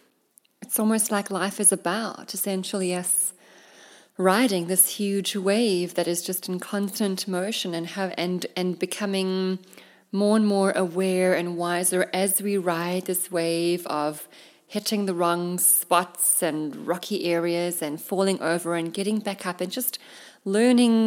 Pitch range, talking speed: 180-210 Hz, 145 wpm